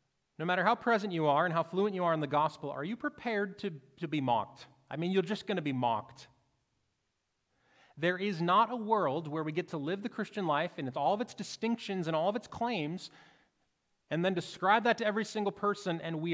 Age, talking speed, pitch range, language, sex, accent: 30-49, 230 wpm, 145-205 Hz, English, male, American